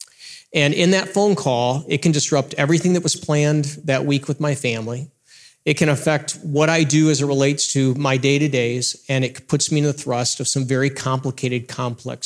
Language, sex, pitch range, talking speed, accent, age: English, male, 130-160 Hz, 200 wpm, American, 40-59